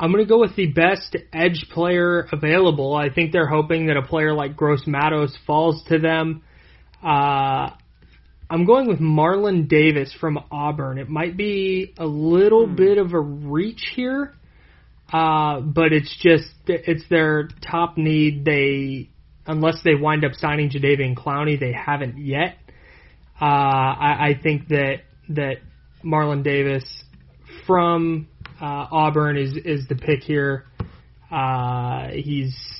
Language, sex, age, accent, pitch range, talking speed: English, male, 20-39, American, 140-165 Hz, 140 wpm